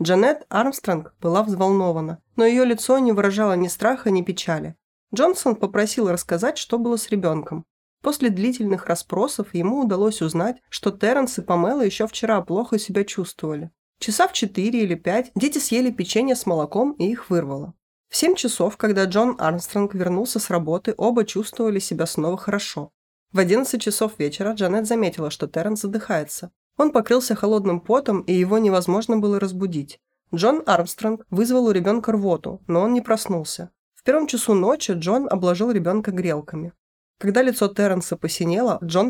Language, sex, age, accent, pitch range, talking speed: Russian, female, 20-39, native, 175-225 Hz, 160 wpm